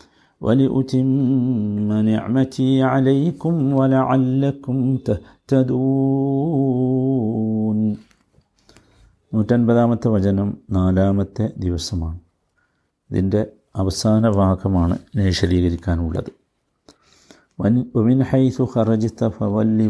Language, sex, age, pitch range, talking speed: Malayalam, male, 50-69, 100-130 Hz, 60 wpm